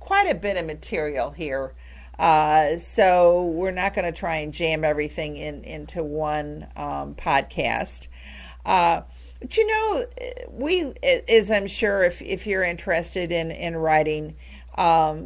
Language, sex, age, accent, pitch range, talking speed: English, female, 50-69, American, 155-200 Hz, 140 wpm